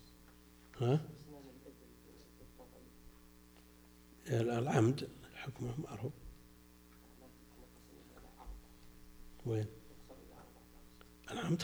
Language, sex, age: Arabic, male, 60-79